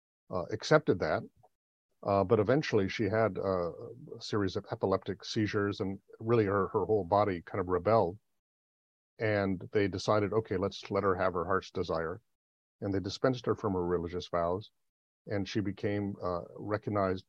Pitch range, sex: 95-115 Hz, male